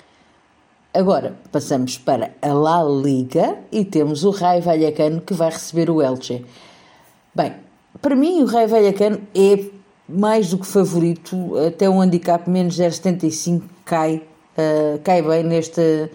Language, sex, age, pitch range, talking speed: Portuguese, female, 50-69, 160-195 Hz, 145 wpm